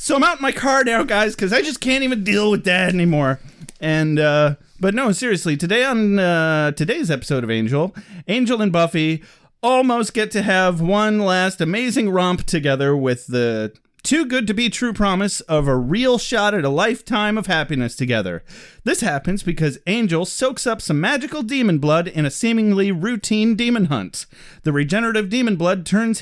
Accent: American